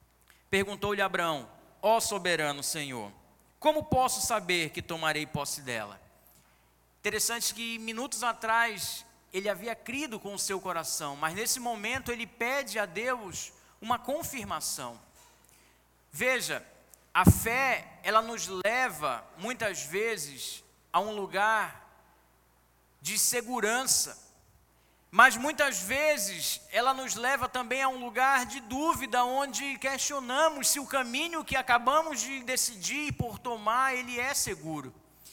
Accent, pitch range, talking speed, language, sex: Brazilian, 180-270 Hz, 120 wpm, Portuguese, male